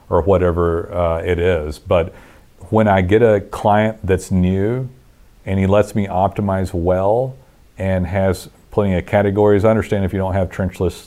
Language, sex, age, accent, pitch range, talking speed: English, male, 40-59, American, 90-105 Hz, 170 wpm